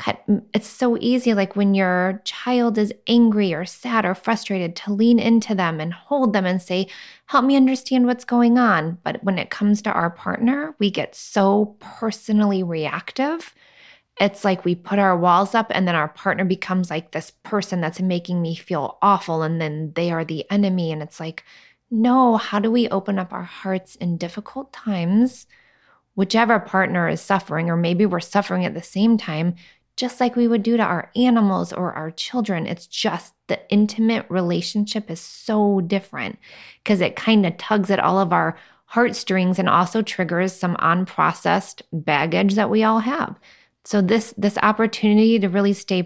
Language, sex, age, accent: English, female, 20-39, American